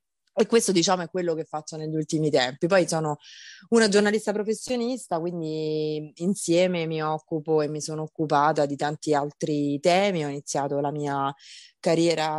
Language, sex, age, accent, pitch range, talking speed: Italian, female, 20-39, native, 150-165 Hz, 155 wpm